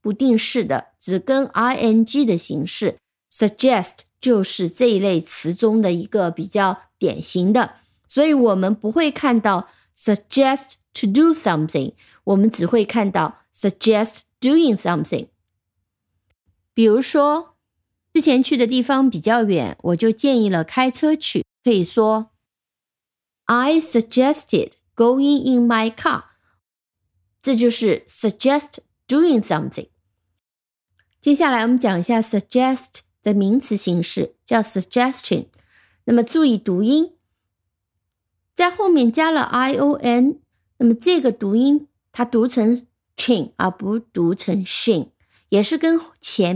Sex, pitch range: female, 185-260 Hz